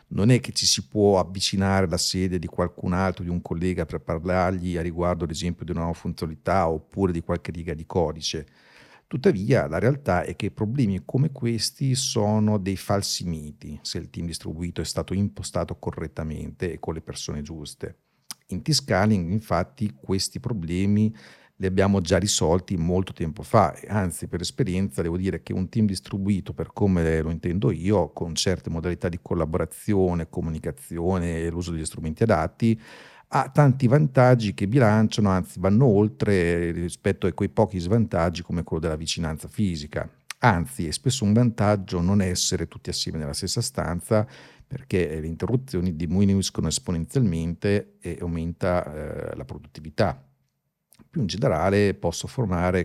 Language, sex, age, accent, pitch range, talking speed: Italian, male, 50-69, native, 85-105 Hz, 155 wpm